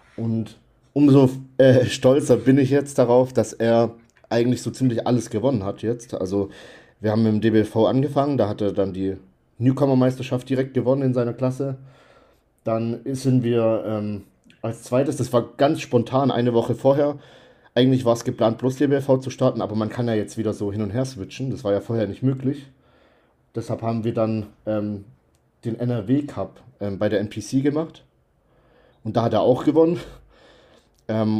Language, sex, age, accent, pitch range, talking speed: German, male, 40-59, German, 105-130 Hz, 175 wpm